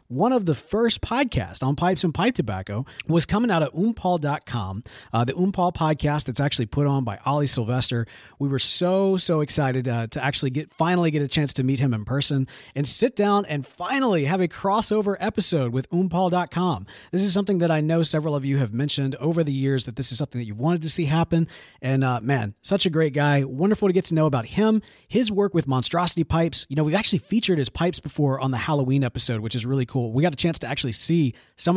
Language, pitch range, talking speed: English, 130-175 Hz, 230 wpm